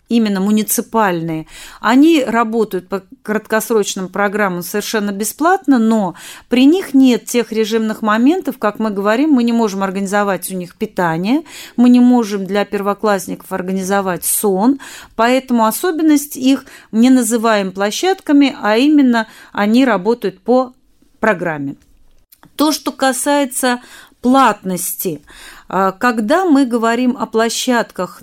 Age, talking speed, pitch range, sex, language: 30-49, 115 wpm, 195-270 Hz, female, Russian